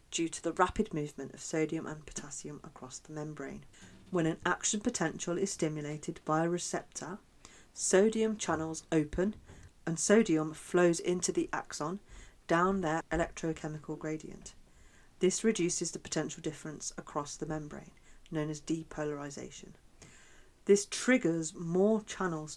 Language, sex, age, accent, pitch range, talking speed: English, female, 40-59, British, 150-185 Hz, 130 wpm